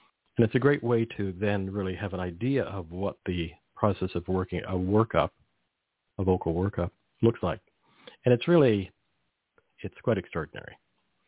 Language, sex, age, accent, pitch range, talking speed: English, male, 50-69, American, 90-110 Hz, 160 wpm